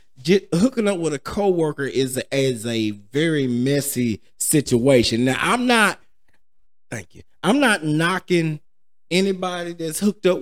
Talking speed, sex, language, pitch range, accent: 130 wpm, male, English, 115-175 Hz, American